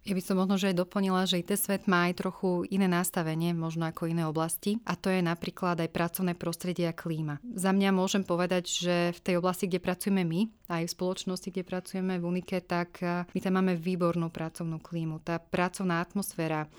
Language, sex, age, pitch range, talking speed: Slovak, female, 30-49, 180-205 Hz, 200 wpm